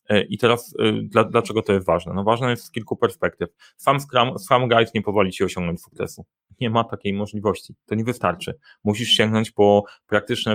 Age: 30-49